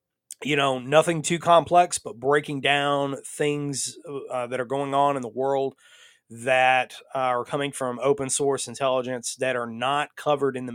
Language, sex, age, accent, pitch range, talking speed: English, male, 30-49, American, 125-150 Hz, 165 wpm